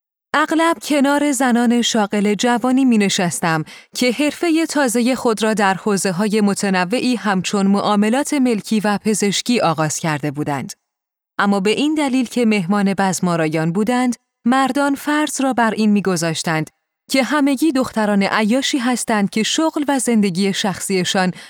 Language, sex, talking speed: Persian, female, 135 wpm